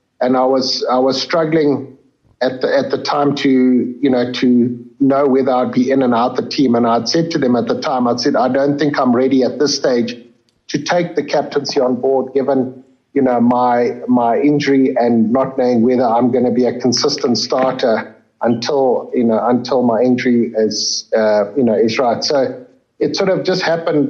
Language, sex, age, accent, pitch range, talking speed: English, male, 50-69, South African, 115-135 Hz, 205 wpm